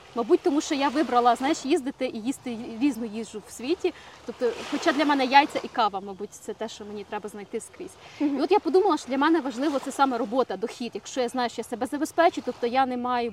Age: 30-49